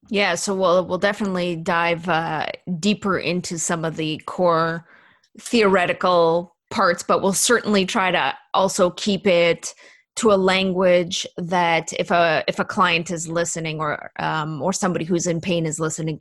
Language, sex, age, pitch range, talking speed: English, female, 20-39, 165-195 Hz, 160 wpm